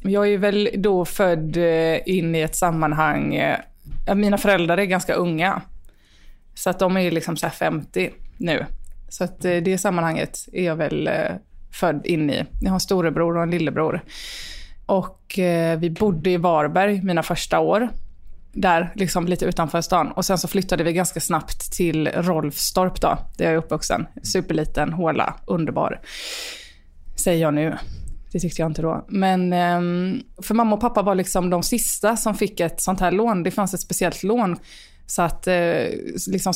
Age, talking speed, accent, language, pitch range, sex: 20-39, 165 wpm, Swedish, English, 165-195 Hz, female